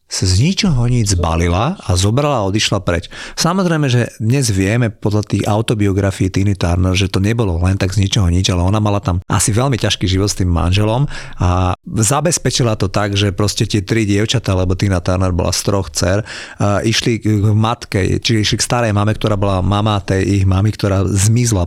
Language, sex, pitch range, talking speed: Slovak, male, 100-125 Hz, 195 wpm